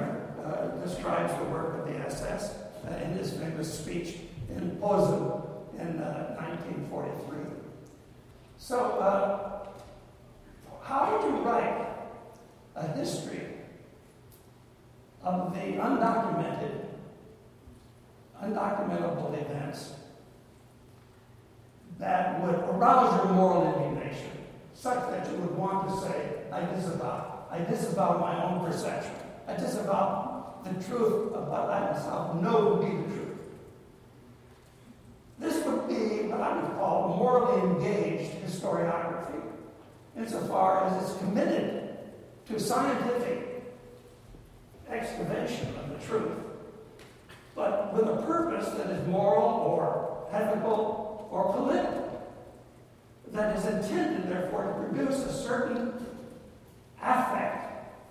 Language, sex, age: English, male, 60-79